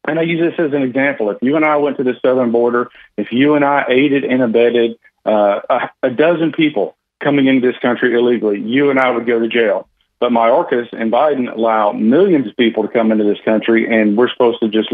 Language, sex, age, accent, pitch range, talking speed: English, male, 40-59, American, 110-135 Hz, 235 wpm